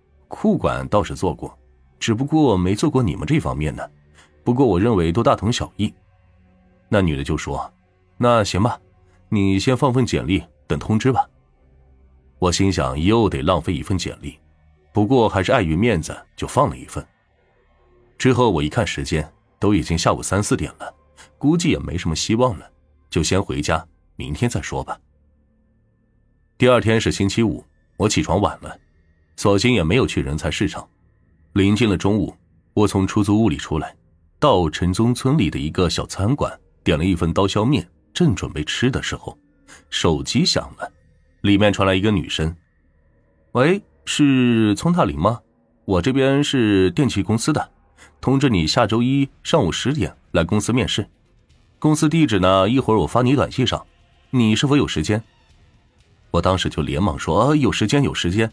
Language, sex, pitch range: Chinese, male, 80-115 Hz